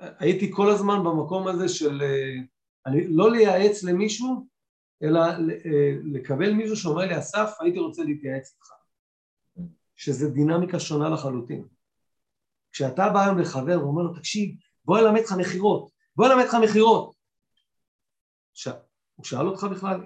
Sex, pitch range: male, 150-210 Hz